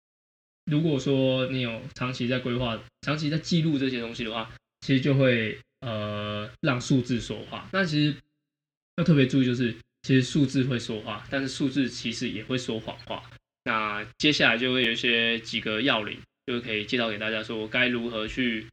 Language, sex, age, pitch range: Chinese, male, 20-39, 115-135 Hz